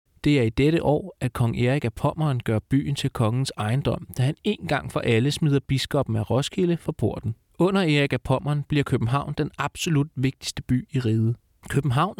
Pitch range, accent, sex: 120-155 Hz, native, male